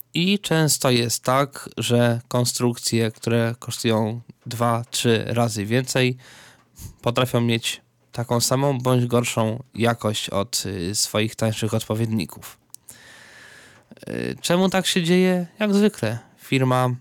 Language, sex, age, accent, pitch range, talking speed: Polish, male, 20-39, native, 115-130 Hz, 100 wpm